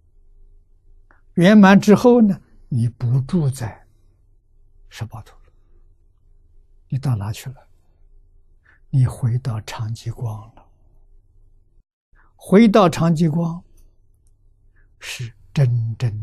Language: Chinese